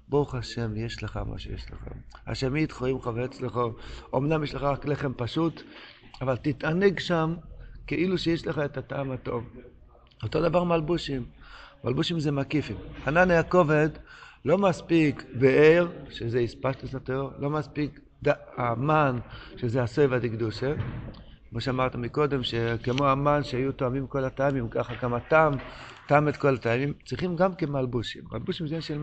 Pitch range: 120-150 Hz